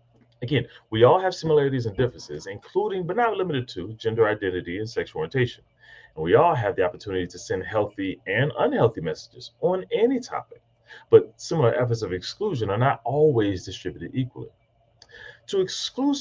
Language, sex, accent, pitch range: English, male, American, 110-160 Hz